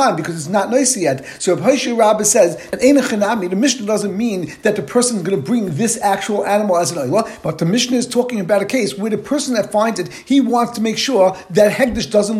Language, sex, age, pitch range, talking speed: English, male, 50-69, 195-250 Hz, 235 wpm